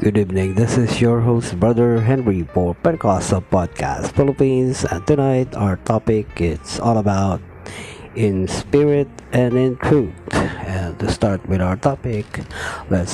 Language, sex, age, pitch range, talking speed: Filipino, male, 50-69, 95-125 Hz, 135 wpm